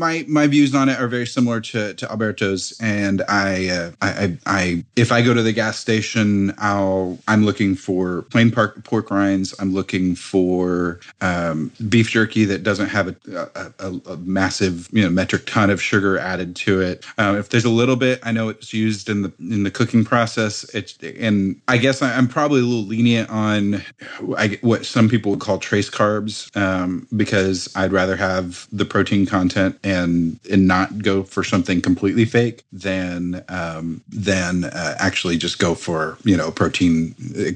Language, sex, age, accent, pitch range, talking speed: English, male, 30-49, American, 95-115 Hz, 180 wpm